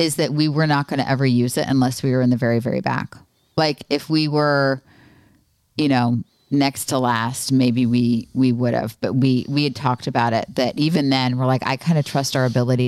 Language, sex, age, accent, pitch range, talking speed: English, female, 30-49, American, 130-180 Hz, 225 wpm